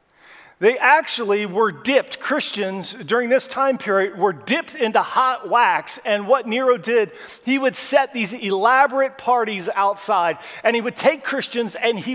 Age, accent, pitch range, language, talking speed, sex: 40-59, American, 200-260 Hz, English, 160 wpm, male